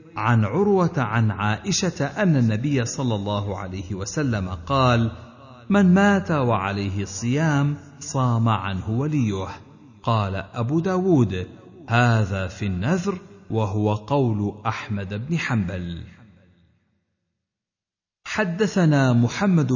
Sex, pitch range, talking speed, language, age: male, 105-155 Hz, 95 wpm, Arabic, 50-69